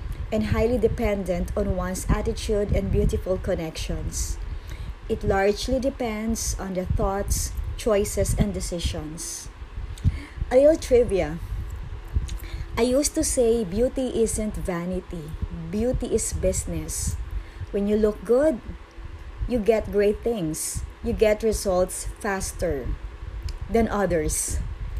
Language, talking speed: English, 110 wpm